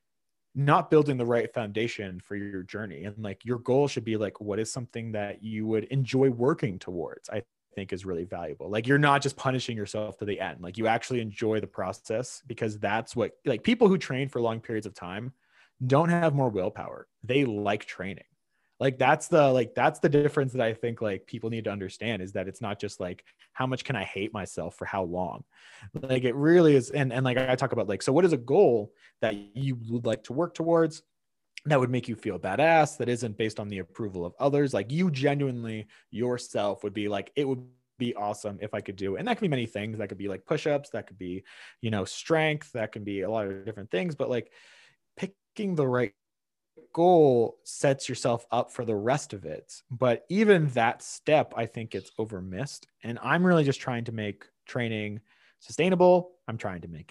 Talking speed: 215 wpm